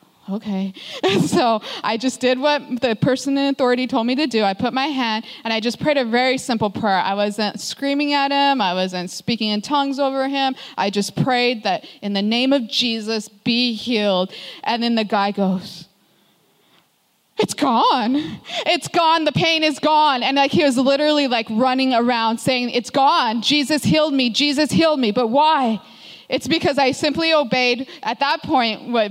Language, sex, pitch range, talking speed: English, female, 215-275 Hz, 190 wpm